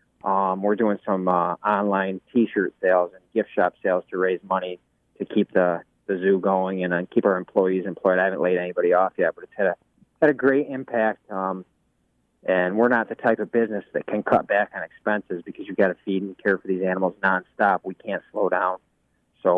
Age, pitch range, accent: 30-49, 95-115 Hz, American